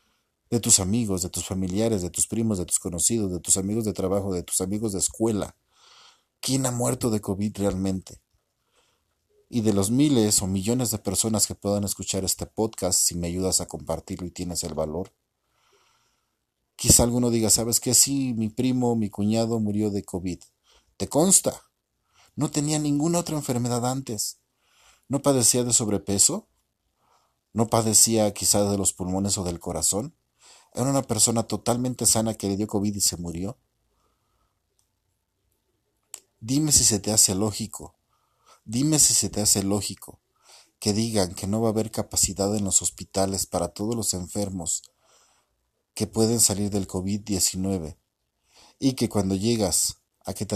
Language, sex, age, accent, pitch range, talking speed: Spanish, male, 40-59, Mexican, 95-115 Hz, 160 wpm